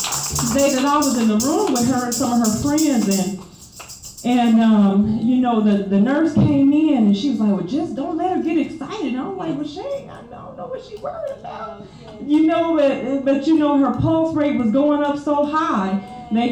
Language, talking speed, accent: English, 220 wpm, American